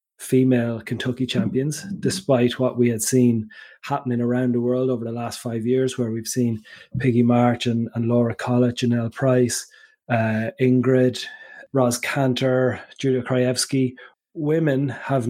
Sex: male